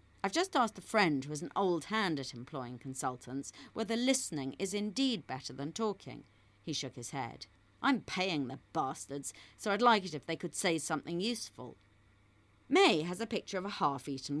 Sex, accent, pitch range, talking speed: female, British, 135-215 Hz, 190 wpm